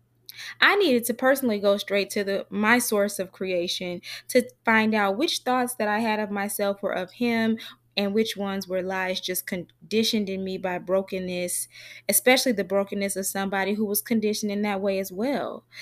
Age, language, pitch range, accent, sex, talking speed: 20-39, English, 190-235 Hz, American, female, 185 wpm